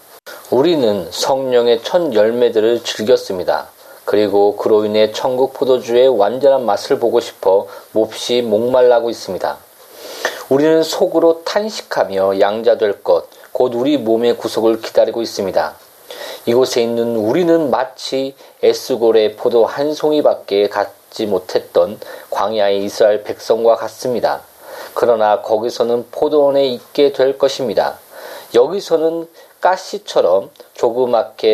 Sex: male